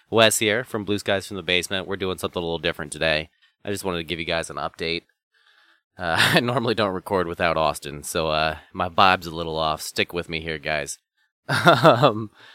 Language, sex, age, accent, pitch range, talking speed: English, male, 30-49, American, 85-105 Hz, 210 wpm